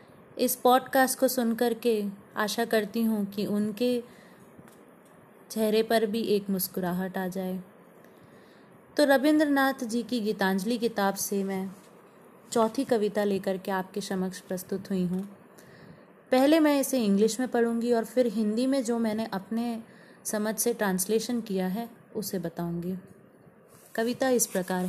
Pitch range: 195-240 Hz